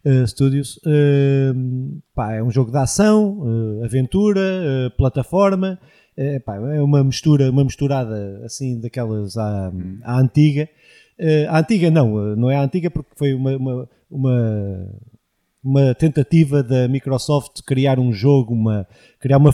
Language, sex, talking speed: Portuguese, male, 145 wpm